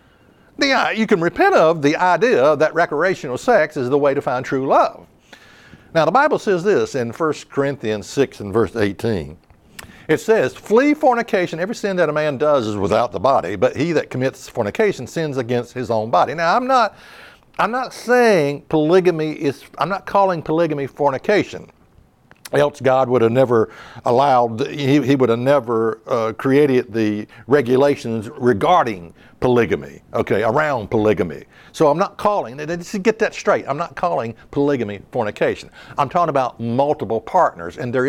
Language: English